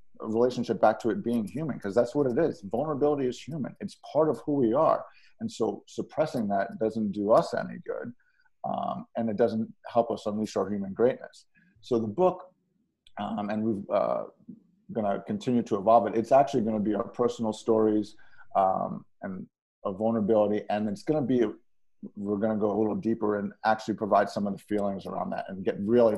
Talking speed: 205 wpm